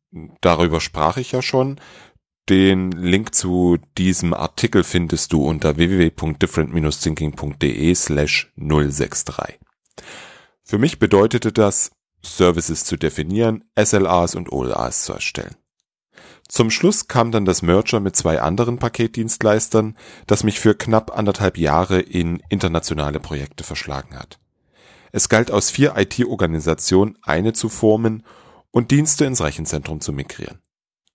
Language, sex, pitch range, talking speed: German, male, 80-105 Hz, 120 wpm